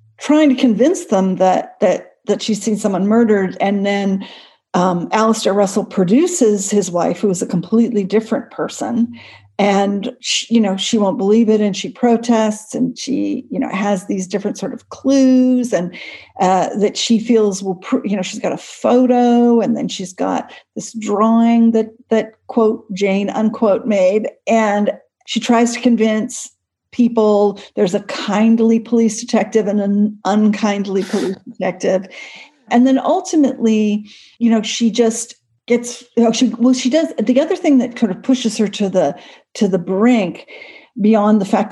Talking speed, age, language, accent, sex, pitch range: 170 wpm, 50-69, English, American, female, 200-245 Hz